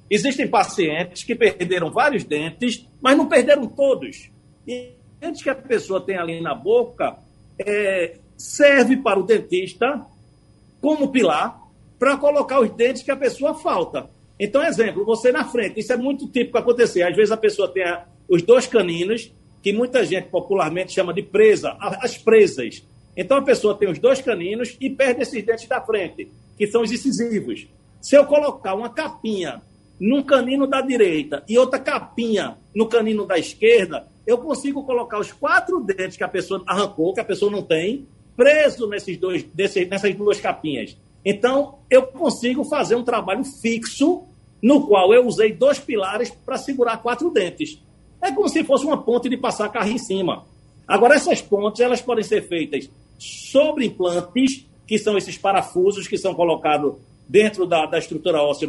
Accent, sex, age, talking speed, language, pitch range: Brazilian, male, 50-69, 170 wpm, Portuguese, 195-275 Hz